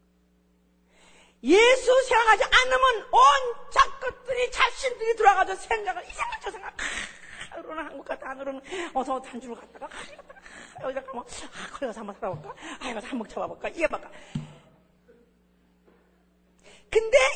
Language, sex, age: Korean, female, 40-59